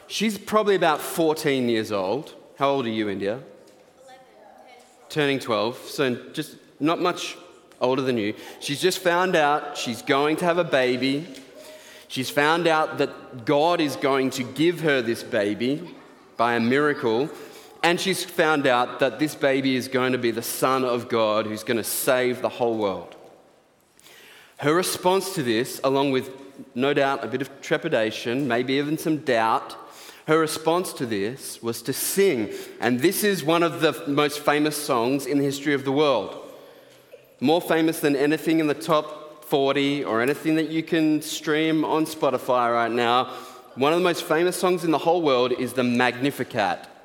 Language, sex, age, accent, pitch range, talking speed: English, male, 30-49, Australian, 125-160 Hz, 175 wpm